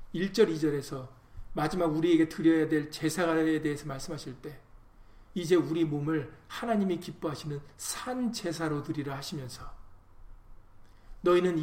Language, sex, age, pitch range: Korean, male, 40-59, 145-205 Hz